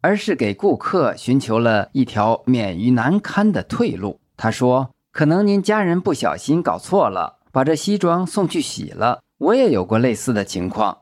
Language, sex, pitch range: Chinese, male, 115-170 Hz